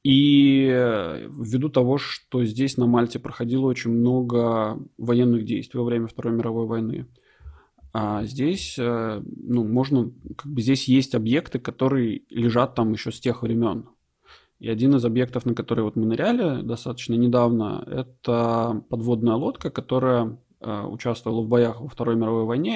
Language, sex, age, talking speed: Russian, male, 20-39, 145 wpm